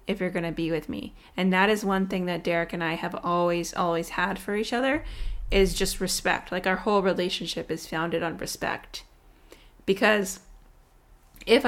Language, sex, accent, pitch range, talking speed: English, female, American, 175-205 Hz, 185 wpm